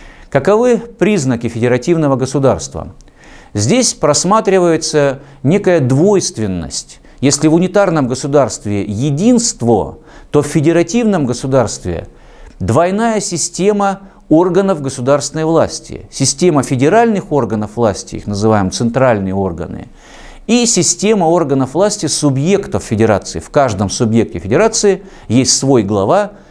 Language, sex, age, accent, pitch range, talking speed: Russian, male, 50-69, native, 120-185 Hz, 95 wpm